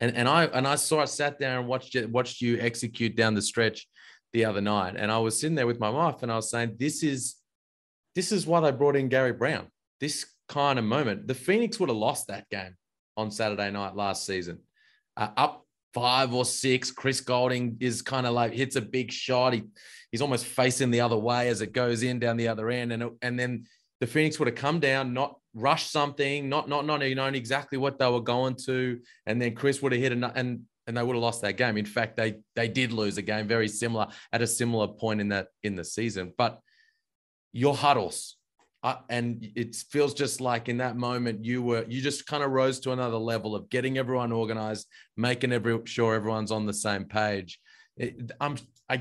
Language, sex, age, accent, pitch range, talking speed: English, male, 20-39, Australian, 115-135 Hz, 220 wpm